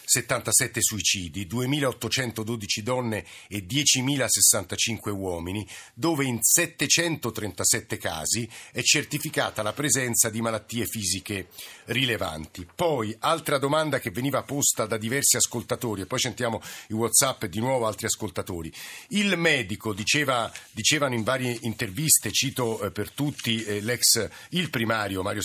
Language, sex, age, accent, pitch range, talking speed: Italian, male, 50-69, native, 105-135 Hz, 125 wpm